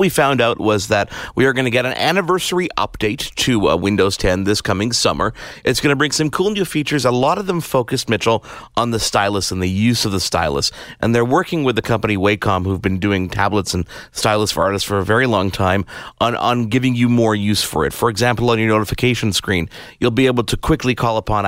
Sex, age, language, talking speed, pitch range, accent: male, 30-49, English, 235 wpm, 105-135 Hz, American